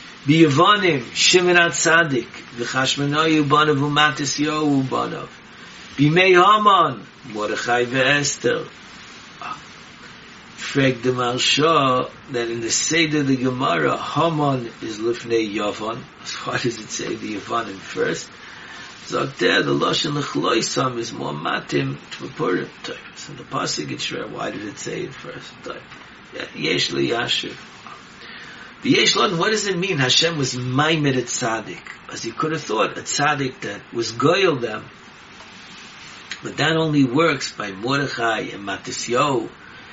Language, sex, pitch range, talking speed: English, male, 120-150 Hz, 130 wpm